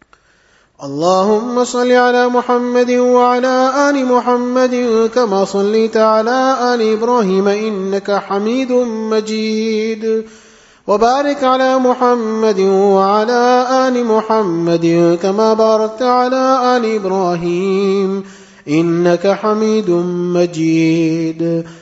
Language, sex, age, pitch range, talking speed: English, male, 30-49, 195-245 Hz, 80 wpm